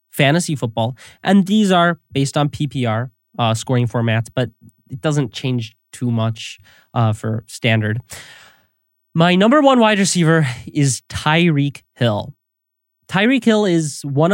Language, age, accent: English, 20-39, American